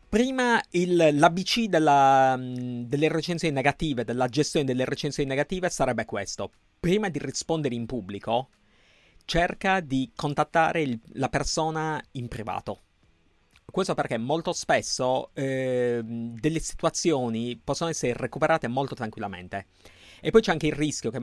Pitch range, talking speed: 115-160 Hz, 120 wpm